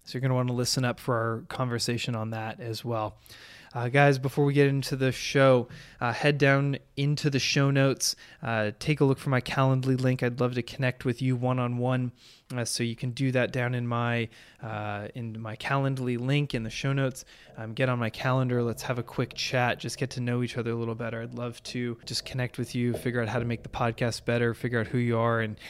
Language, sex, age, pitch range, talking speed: English, male, 20-39, 120-135 Hz, 235 wpm